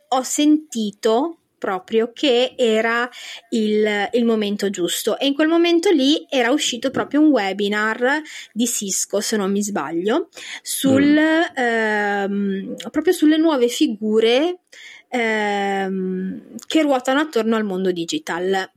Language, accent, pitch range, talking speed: Italian, native, 205-265 Hz, 120 wpm